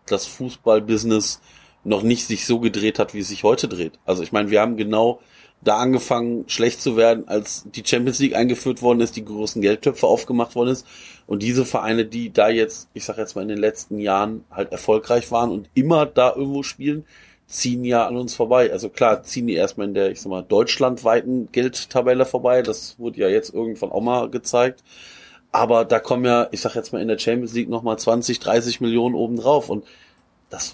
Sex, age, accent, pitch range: male, 30-49, German, 105-125 Hz